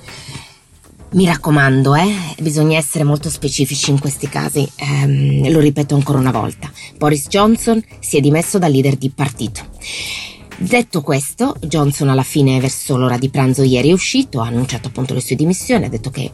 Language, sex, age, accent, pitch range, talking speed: Italian, female, 20-39, native, 125-150 Hz, 170 wpm